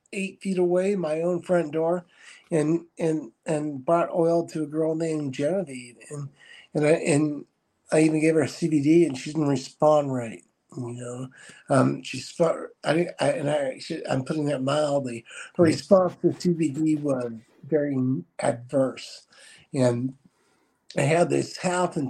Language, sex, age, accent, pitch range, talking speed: English, male, 60-79, American, 150-225 Hz, 155 wpm